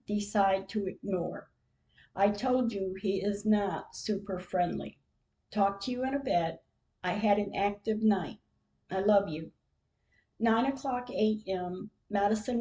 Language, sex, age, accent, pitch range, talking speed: English, female, 50-69, American, 185-220 Hz, 140 wpm